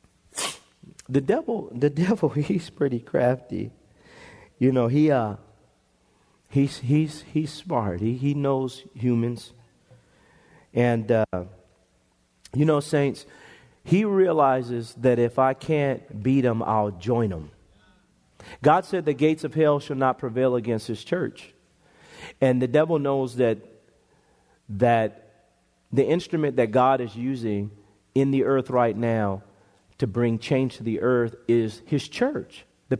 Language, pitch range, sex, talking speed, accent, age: English, 115-150 Hz, male, 135 wpm, American, 40-59